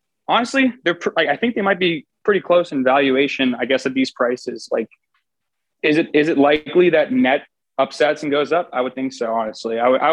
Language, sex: English, male